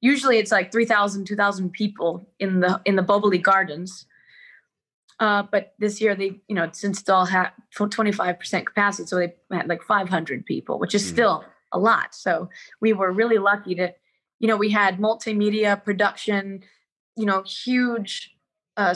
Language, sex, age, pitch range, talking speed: English, female, 20-39, 195-225 Hz, 160 wpm